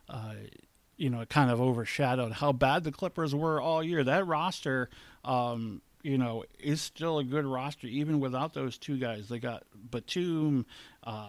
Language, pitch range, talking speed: English, 115-145 Hz, 175 wpm